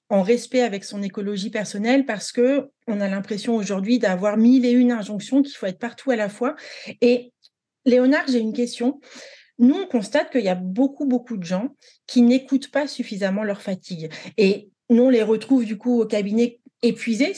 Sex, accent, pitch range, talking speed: female, French, 205-255 Hz, 190 wpm